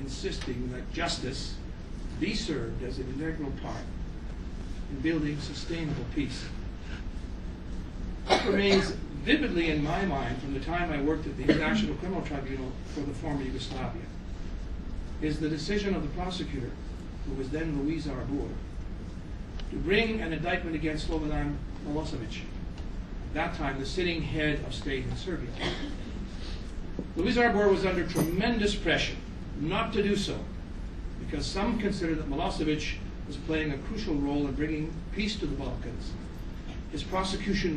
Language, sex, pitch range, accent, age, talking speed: English, male, 100-165 Hz, American, 60-79, 140 wpm